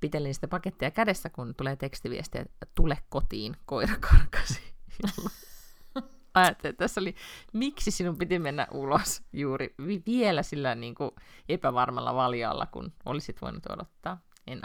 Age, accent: 30-49, native